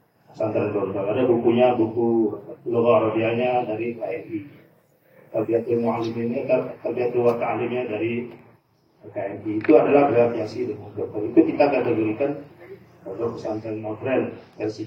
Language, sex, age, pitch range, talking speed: Arabic, male, 40-59, 115-155 Hz, 120 wpm